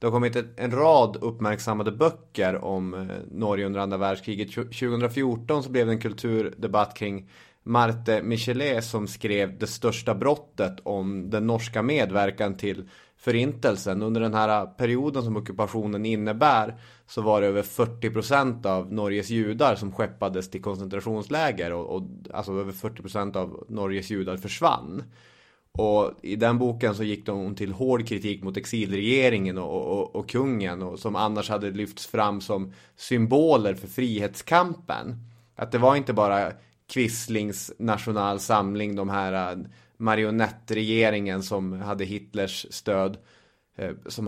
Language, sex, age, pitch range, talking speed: Swedish, male, 30-49, 100-120 Hz, 140 wpm